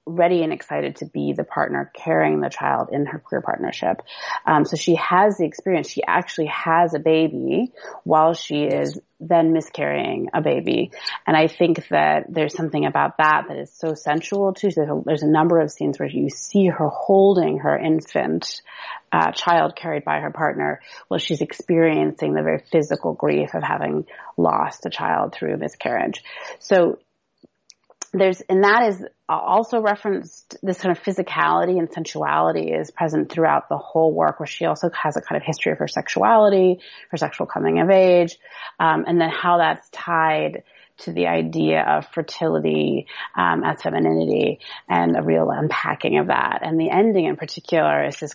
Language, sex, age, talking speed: English, female, 30-49, 175 wpm